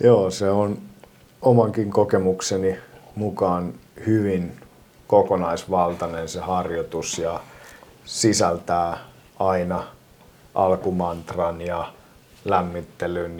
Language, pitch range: Finnish, 85-105 Hz